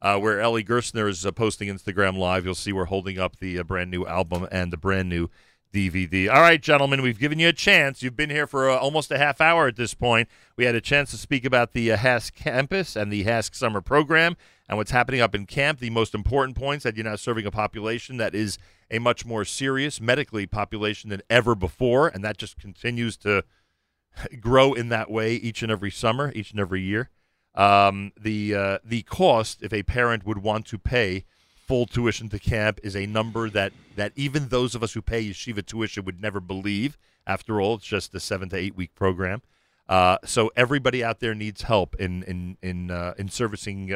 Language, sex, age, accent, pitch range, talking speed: English, male, 40-59, American, 95-120 Hz, 215 wpm